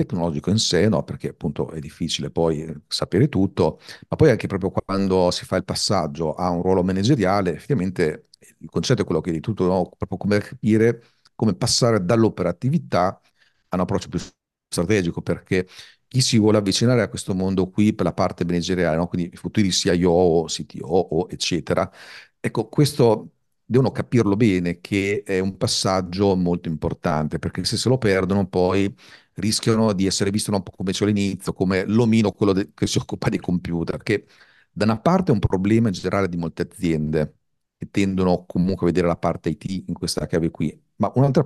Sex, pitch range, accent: male, 85-105 Hz, native